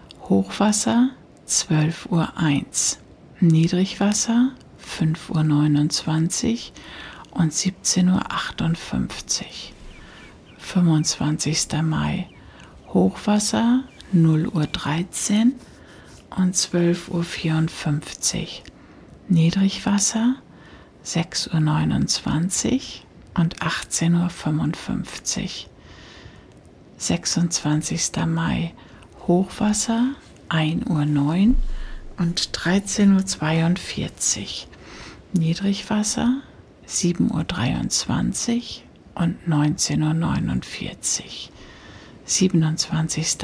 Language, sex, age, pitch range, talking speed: German, female, 60-79, 160-205 Hz, 60 wpm